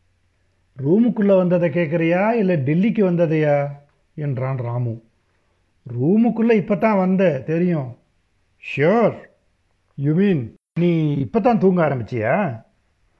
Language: Tamil